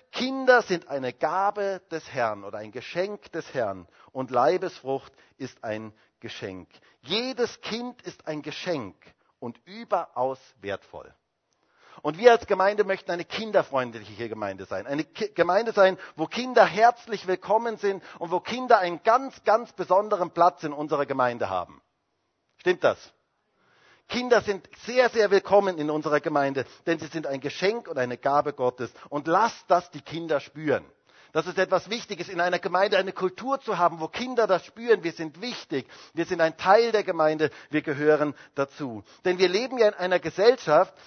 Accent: German